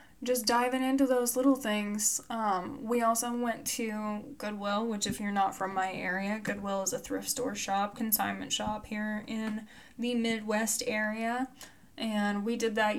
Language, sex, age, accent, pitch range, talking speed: English, female, 10-29, American, 205-240 Hz, 165 wpm